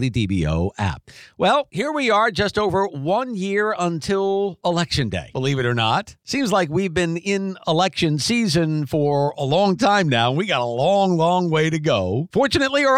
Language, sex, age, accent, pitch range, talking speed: English, male, 50-69, American, 135-185 Hz, 180 wpm